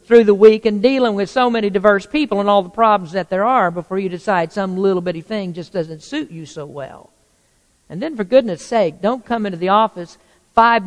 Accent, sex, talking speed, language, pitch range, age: American, female, 225 wpm, English, 185-255 Hz, 50-69